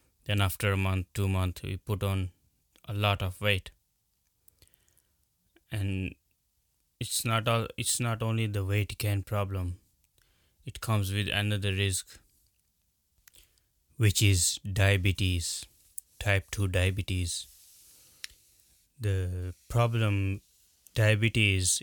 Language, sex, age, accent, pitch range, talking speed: English, male, 20-39, Indian, 90-100 Hz, 100 wpm